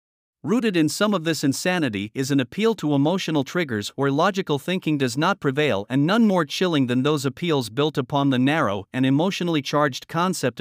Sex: male